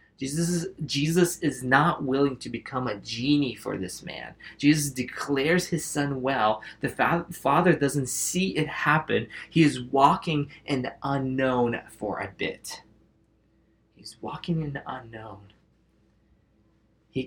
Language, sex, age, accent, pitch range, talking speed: English, male, 20-39, American, 125-170 Hz, 135 wpm